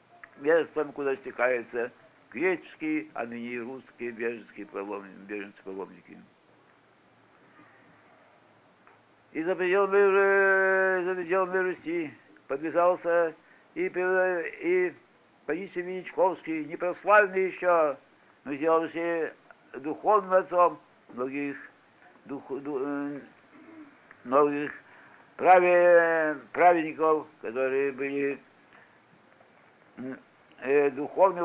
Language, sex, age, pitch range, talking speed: English, male, 60-79, 135-185 Hz, 75 wpm